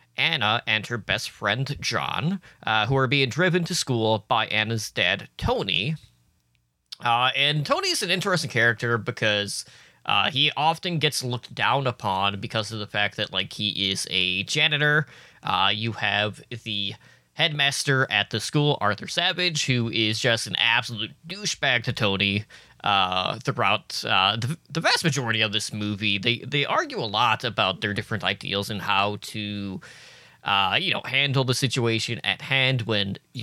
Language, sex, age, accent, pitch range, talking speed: English, male, 20-39, American, 105-135 Hz, 165 wpm